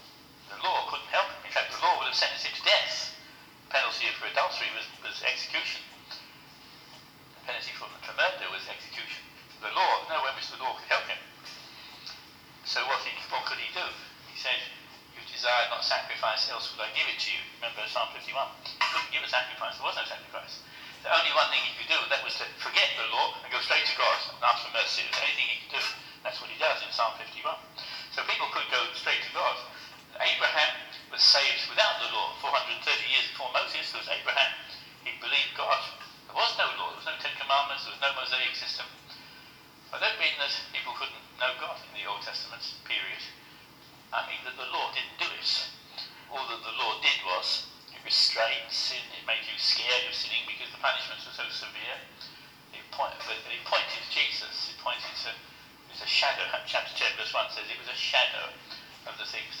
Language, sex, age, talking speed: English, male, 60-79, 200 wpm